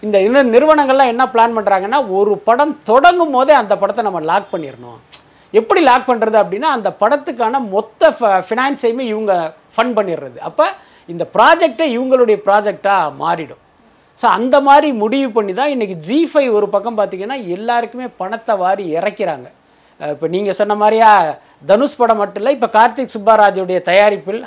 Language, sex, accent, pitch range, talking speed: Tamil, male, native, 195-250 Hz, 145 wpm